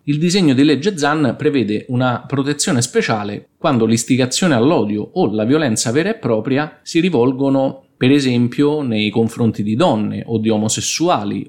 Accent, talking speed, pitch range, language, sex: native, 150 wpm, 110-140 Hz, Italian, male